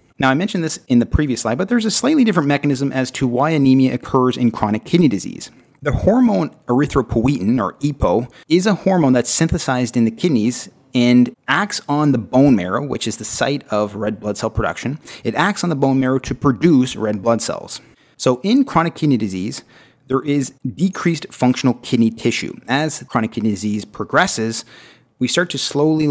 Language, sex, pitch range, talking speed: English, male, 115-145 Hz, 190 wpm